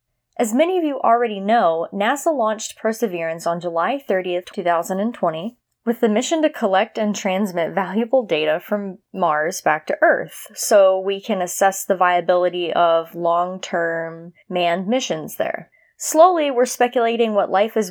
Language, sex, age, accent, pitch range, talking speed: English, female, 20-39, American, 180-235 Hz, 145 wpm